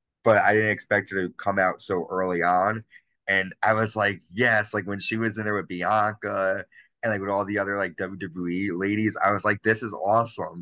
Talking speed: 220 wpm